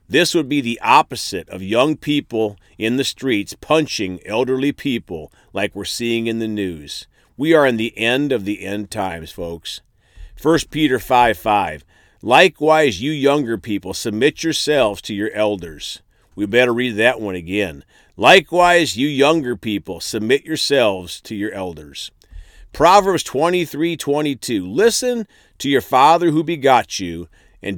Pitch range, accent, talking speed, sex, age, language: 100-150 Hz, American, 145 wpm, male, 40-59, English